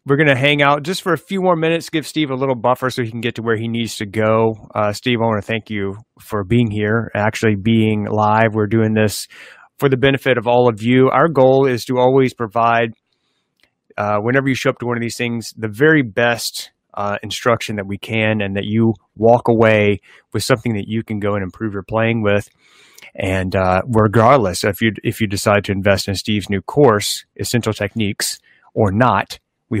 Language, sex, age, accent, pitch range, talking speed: English, male, 30-49, American, 110-130 Hz, 215 wpm